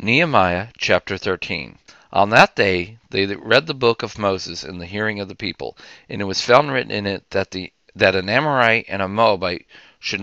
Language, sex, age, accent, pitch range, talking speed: English, male, 50-69, American, 95-115 Hz, 200 wpm